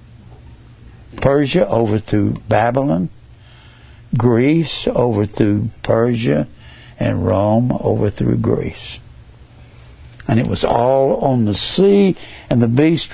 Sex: male